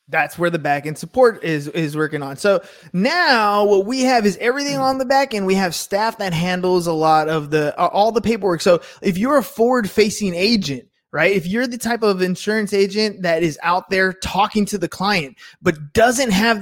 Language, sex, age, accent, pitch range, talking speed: English, male, 20-39, American, 160-205 Hz, 215 wpm